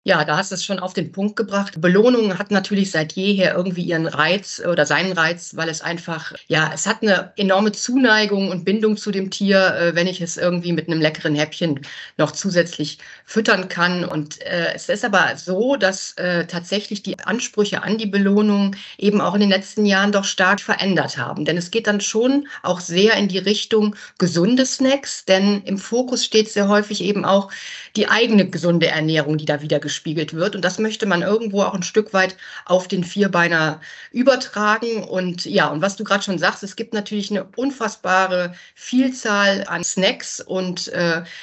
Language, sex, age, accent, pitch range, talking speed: German, female, 60-79, German, 175-210 Hz, 190 wpm